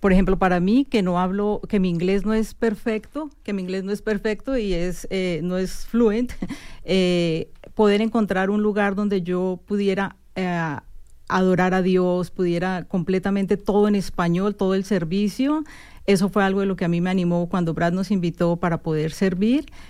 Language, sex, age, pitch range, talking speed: Spanish, female, 40-59, 180-205 Hz, 185 wpm